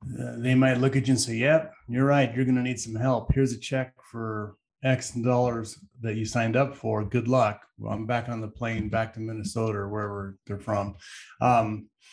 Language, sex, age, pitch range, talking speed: English, male, 30-49, 110-130 Hz, 215 wpm